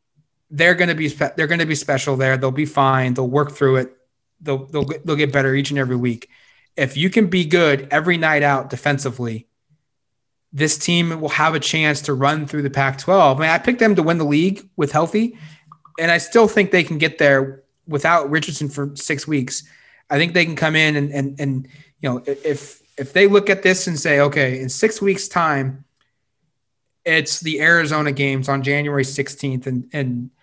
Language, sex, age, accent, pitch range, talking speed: English, male, 20-39, American, 135-170 Hz, 205 wpm